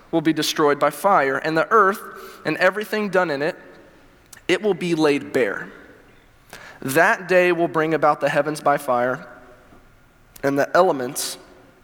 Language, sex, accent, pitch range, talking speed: English, male, American, 130-195 Hz, 150 wpm